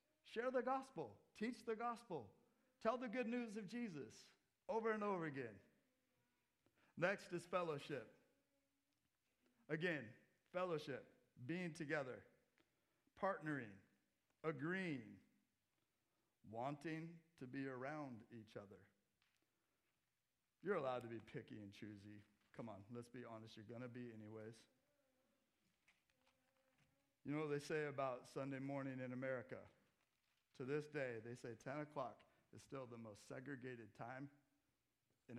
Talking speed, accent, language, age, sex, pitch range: 120 wpm, American, English, 50-69, male, 115-160 Hz